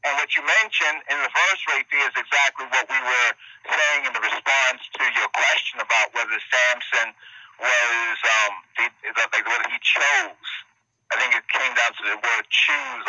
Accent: American